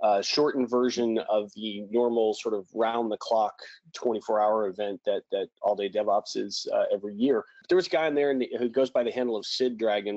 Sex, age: male, 30-49